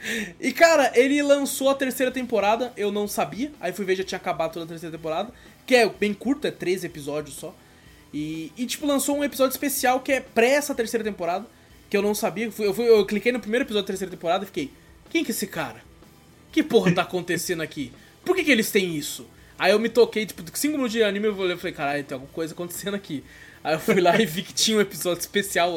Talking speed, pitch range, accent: 235 wpm, 165-235 Hz, Brazilian